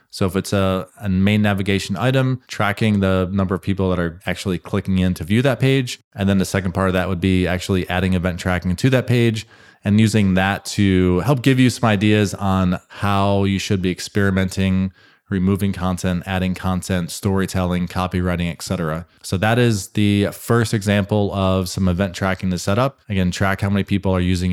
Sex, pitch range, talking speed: male, 95-115 Hz, 200 wpm